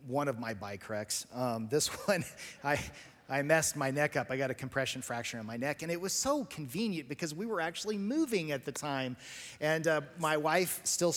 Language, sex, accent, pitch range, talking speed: English, male, American, 130-160 Hz, 215 wpm